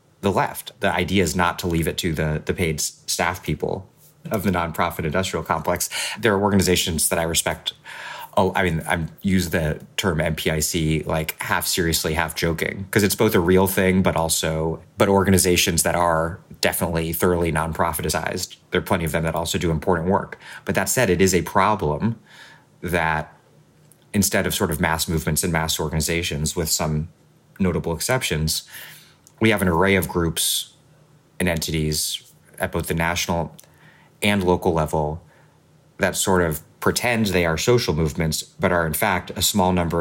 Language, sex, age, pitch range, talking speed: English, male, 30-49, 80-105 Hz, 170 wpm